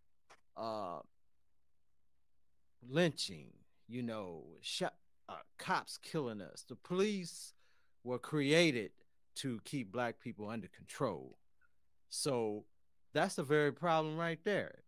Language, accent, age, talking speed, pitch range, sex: English, American, 40-59, 105 wpm, 100-150 Hz, male